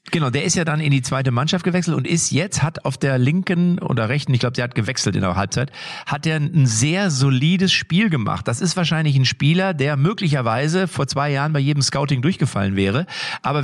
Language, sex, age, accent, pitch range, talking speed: German, male, 40-59, German, 130-165 Hz, 220 wpm